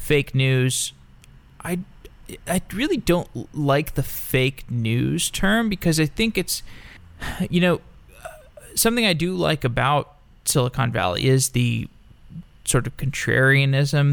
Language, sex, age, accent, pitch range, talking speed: English, male, 20-39, American, 120-155 Hz, 125 wpm